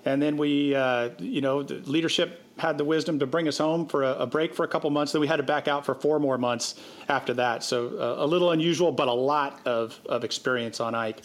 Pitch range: 125-155 Hz